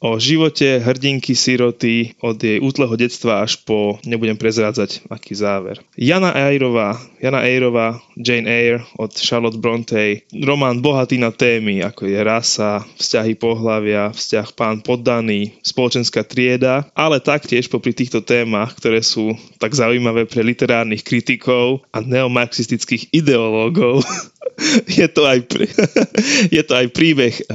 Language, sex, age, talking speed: Slovak, male, 20-39, 125 wpm